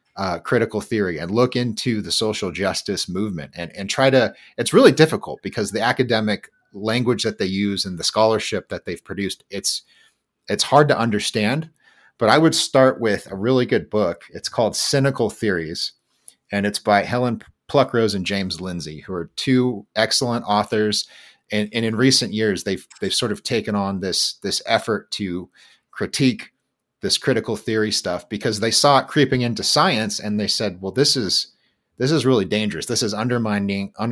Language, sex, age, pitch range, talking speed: English, male, 30-49, 100-125 Hz, 180 wpm